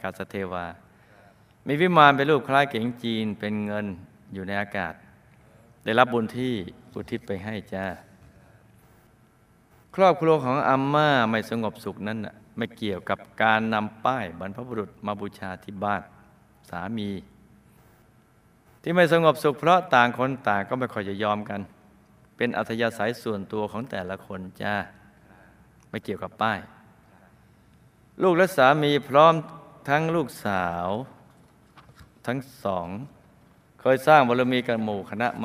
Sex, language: male, Thai